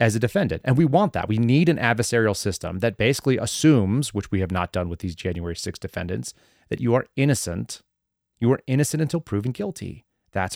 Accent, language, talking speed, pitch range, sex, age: American, English, 205 wpm, 100-120 Hz, male, 30-49